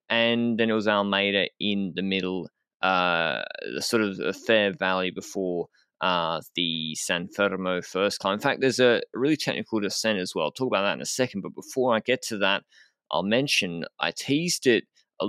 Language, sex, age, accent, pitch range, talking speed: English, male, 20-39, Australian, 95-115 Hz, 190 wpm